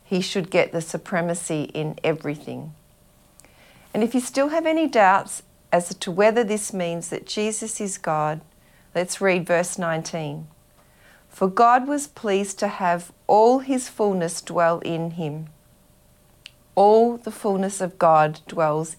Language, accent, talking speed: English, Australian, 140 wpm